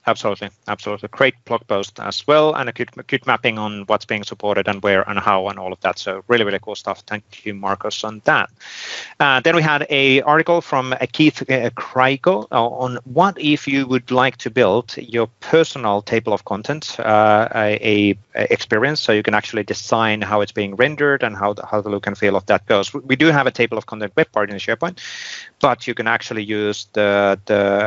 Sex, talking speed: male, 205 wpm